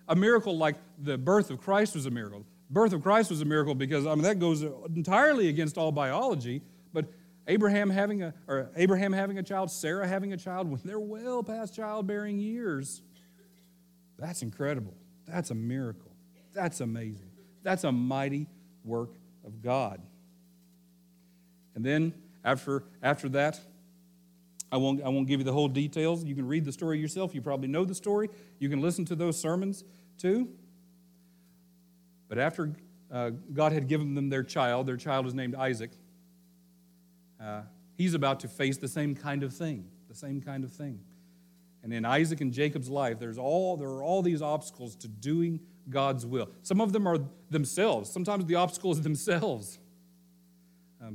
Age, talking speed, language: 50-69, 170 wpm, English